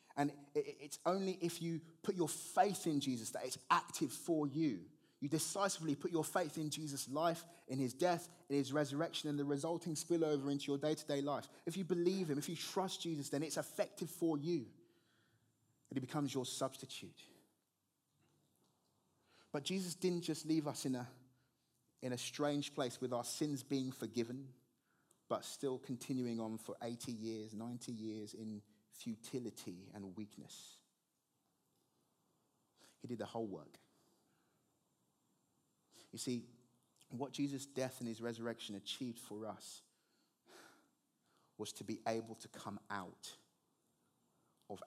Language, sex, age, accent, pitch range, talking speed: English, male, 20-39, British, 120-155 Hz, 145 wpm